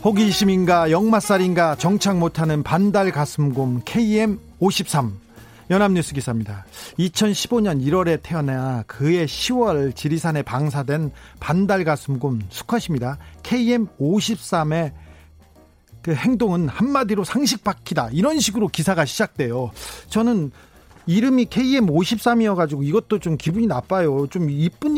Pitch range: 145-215 Hz